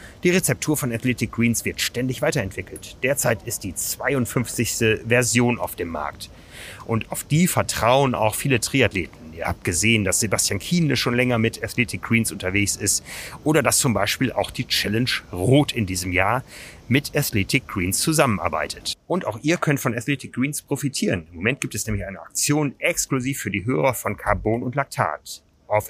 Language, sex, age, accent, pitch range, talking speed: German, male, 30-49, German, 105-140 Hz, 175 wpm